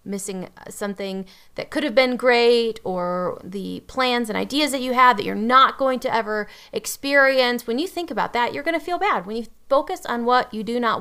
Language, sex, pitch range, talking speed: English, female, 200-250 Hz, 220 wpm